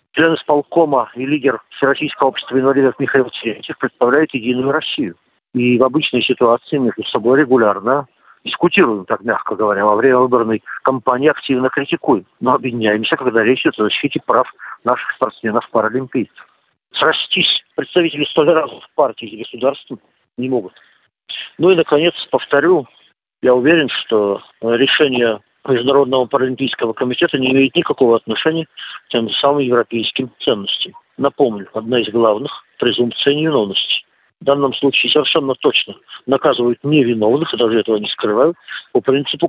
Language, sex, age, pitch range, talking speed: Russian, male, 50-69, 120-145 Hz, 140 wpm